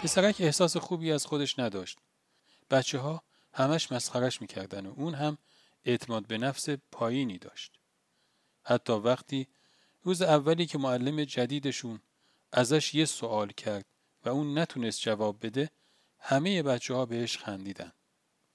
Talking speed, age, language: 130 wpm, 40-59, Persian